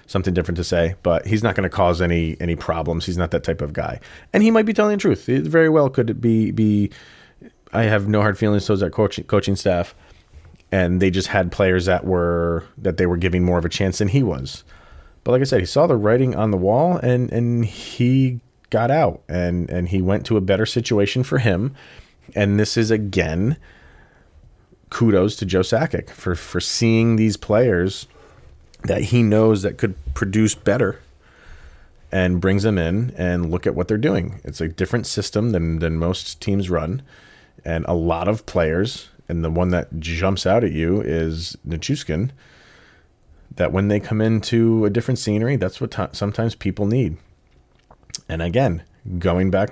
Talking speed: 190 wpm